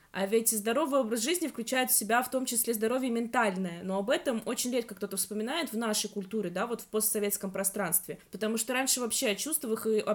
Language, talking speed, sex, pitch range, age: Russian, 215 wpm, female, 210-255 Hz, 20-39